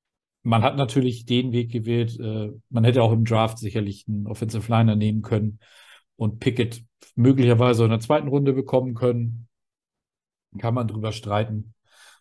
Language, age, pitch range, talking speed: German, 50-69, 105-120 Hz, 145 wpm